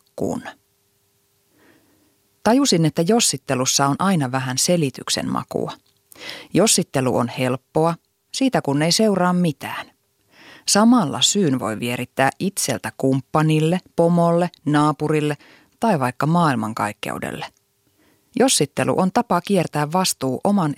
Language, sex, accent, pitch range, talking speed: Finnish, female, native, 130-175 Hz, 95 wpm